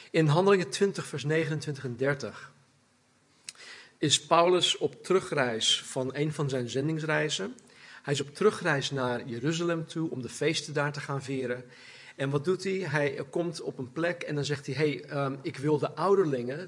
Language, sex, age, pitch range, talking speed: Dutch, male, 40-59, 135-175 Hz, 180 wpm